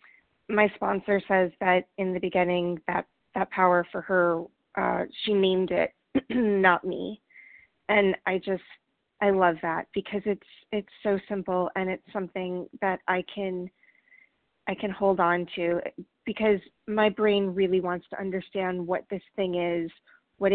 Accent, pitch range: American, 185-210 Hz